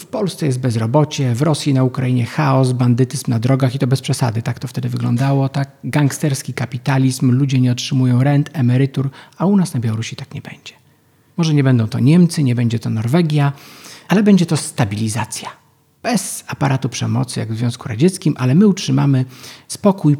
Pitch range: 120-150 Hz